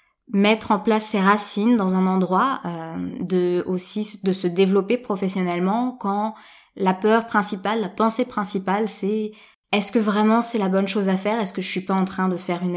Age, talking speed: 20-39, 195 wpm